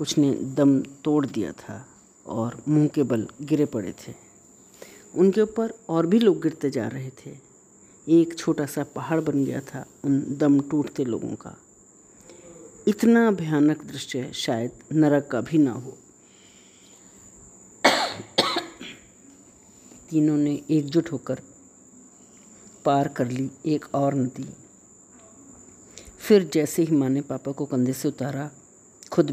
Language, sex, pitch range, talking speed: Hindi, female, 135-165 Hz, 130 wpm